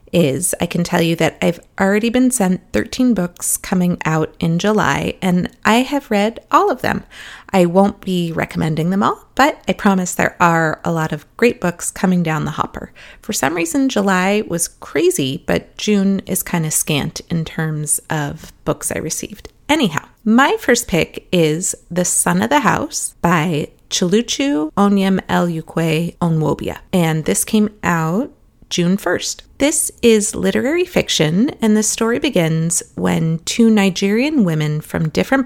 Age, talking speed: 30-49, 160 wpm